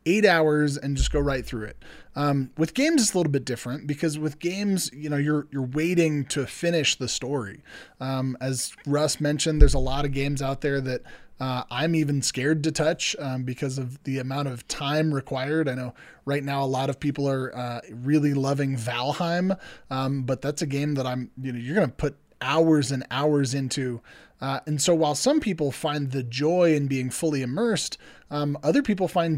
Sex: male